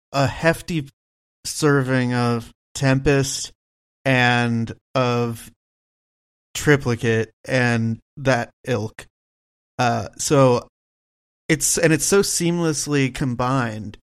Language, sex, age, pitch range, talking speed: English, male, 30-49, 115-135 Hz, 80 wpm